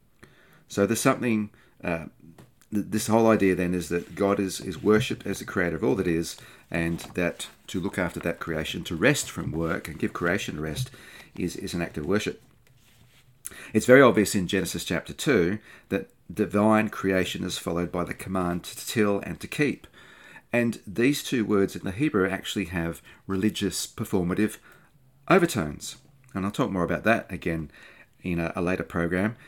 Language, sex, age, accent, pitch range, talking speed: English, male, 40-59, Australian, 85-110 Hz, 175 wpm